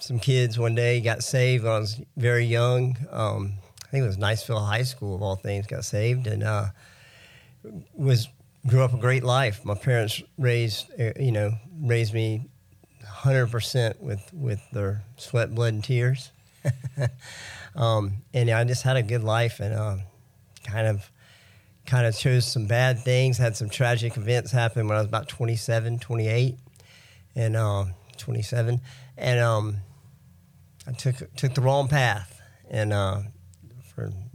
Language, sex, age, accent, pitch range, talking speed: English, male, 40-59, American, 110-130 Hz, 155 wpm